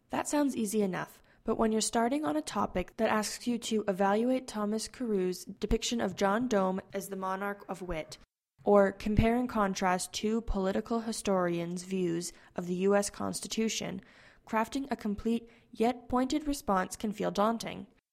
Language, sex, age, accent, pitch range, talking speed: English, female, 10-29, American, 195-235 Hz, 160 wpm